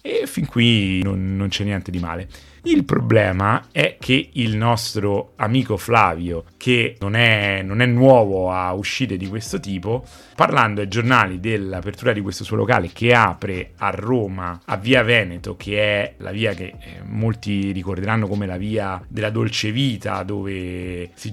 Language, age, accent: Italian, 30-49, native